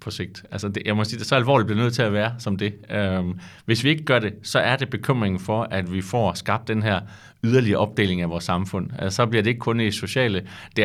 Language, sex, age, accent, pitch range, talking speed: Danish, male, 30-49, native, 105-130 Hz, 275 wpm